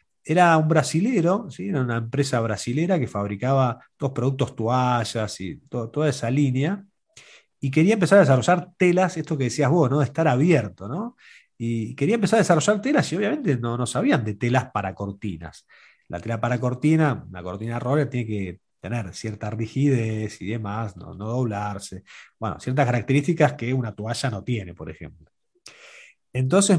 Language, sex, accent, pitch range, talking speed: Spanish, male, Argentinian, 120-180 Hz, 170 wpm